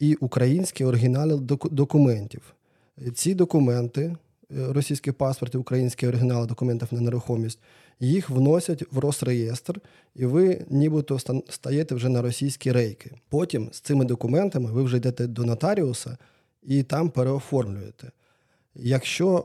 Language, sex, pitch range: Ukrainian, male, 120-140 Hz